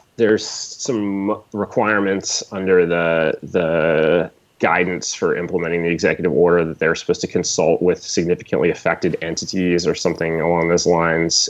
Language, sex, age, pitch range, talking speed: English, male, 20-39, 85-90 Hz, 135 wpm